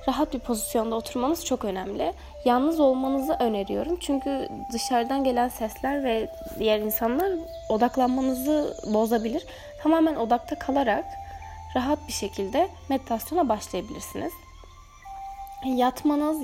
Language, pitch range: Turkish, 215-295 Hz